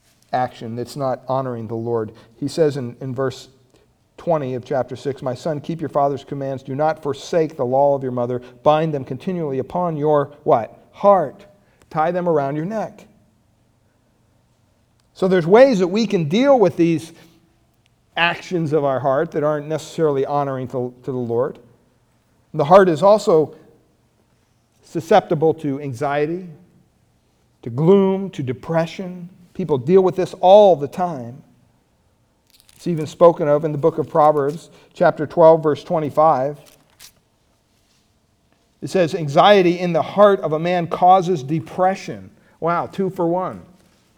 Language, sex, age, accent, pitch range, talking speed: English, male, 50-69, American, 130-180 Hz, 145 wpm